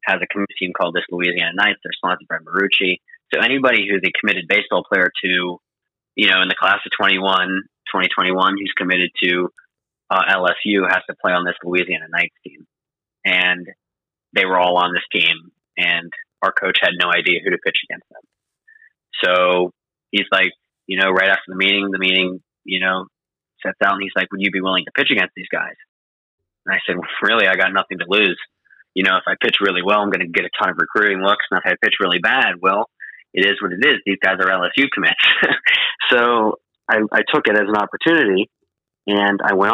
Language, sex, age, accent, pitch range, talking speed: English, male, 30-49, American, 90-105 Hz, 210 wpm